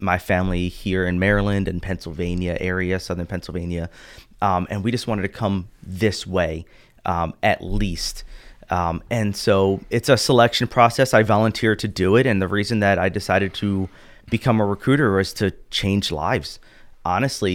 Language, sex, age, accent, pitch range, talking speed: English, male, 30-49, American, 95-120 Hz, 170 wpm